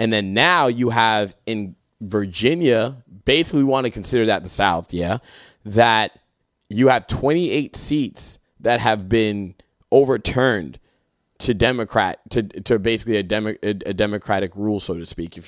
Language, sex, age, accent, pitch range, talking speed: English, male, 20-39, American, 100-115 Hz, 155 wpm